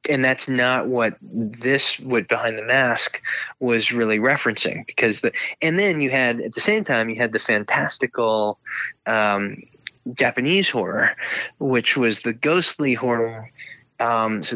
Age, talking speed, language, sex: 20-39, 150 wpm, English, male